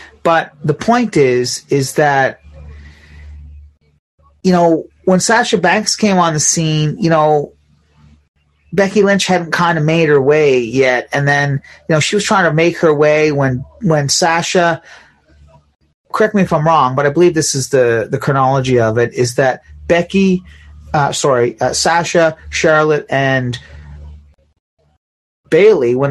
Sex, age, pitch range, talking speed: male, 30-49, 120-155 Hz, 150 wpm